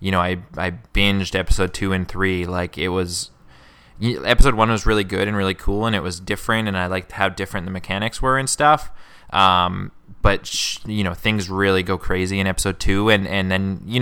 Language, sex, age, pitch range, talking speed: English, male, 20-39, 95-105 Hz, 215 wpm